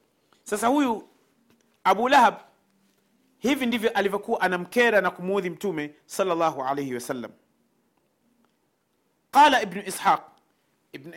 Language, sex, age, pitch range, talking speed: Swahili, male, 40-59, 170-225 Hz, 100 wpm